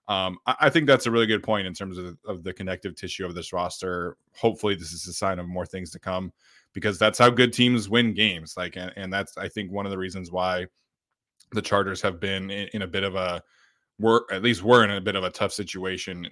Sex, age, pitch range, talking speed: male, 20-39, 90-110 Hz, 245 wpm